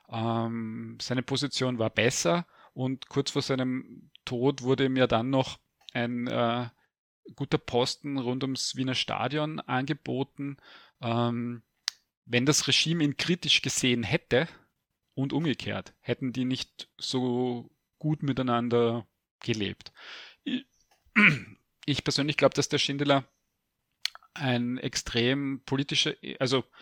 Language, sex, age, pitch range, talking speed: German, male, 30-49, 120-140 Hz, 115 wpm